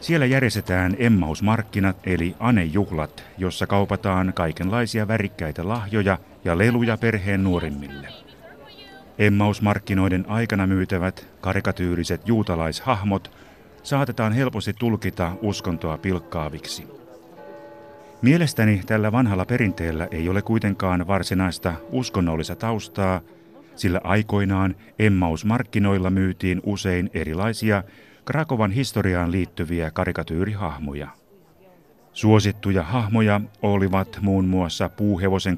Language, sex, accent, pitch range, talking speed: Finnish, male, native, 90-105 Hz, 85 wpm